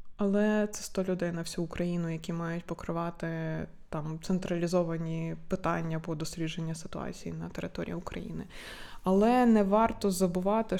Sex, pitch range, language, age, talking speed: female, 170-210 Hz, Ukrainian, 20-39, 130 wpm